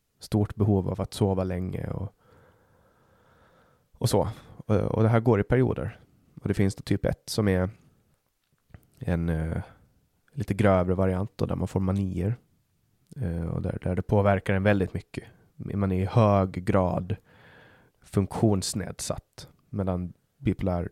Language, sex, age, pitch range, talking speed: Swedish, male, 20-39, 90-115 Hz, 145 wpm